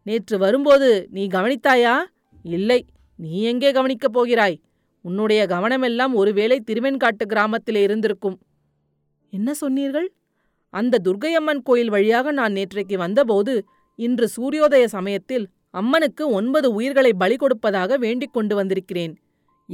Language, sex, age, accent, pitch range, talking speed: Tamil, female, 30-49, native, 190-260 Hz, 105 wpm